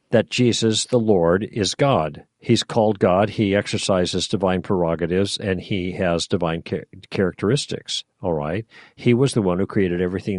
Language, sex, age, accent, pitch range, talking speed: English, male, 50-69, American, 95-120 Hz, 160 wpm